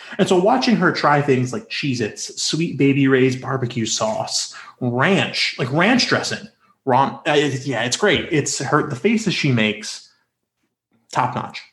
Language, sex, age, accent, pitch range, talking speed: English, male, 30-49, American, 125-180 Hz, 150 wpm